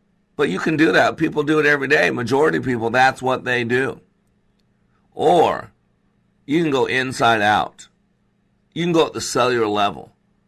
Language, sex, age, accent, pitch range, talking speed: English, male, 50-69, American, 115-140 Hz, 170 wpm